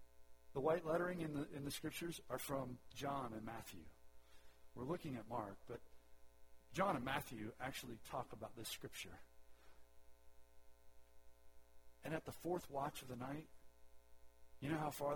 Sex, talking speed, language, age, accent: male, 150 wpm, English, 40-59, American